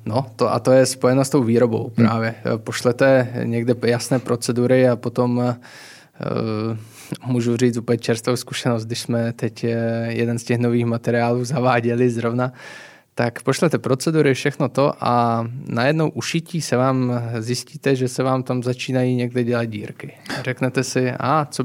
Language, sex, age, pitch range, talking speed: Czech, male, 20-39, 120-135 Hz, 150 wpm